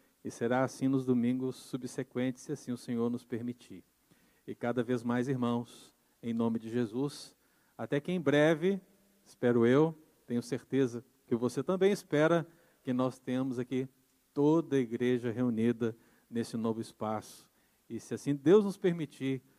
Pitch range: 120-145 Hz